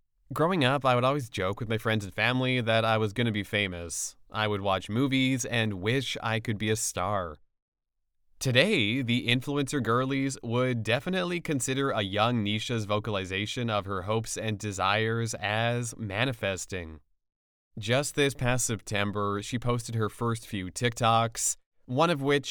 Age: 30-49